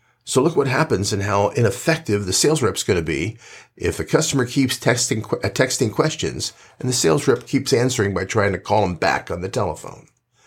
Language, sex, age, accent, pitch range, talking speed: English, male, 50-69, American, 105-140 Hz, 200 wpm